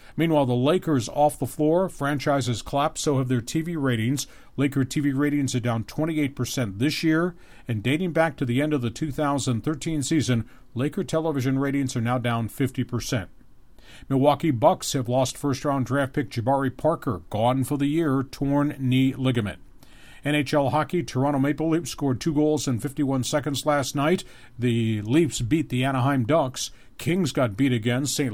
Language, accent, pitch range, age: English, American, 125-150 Hz, 50-69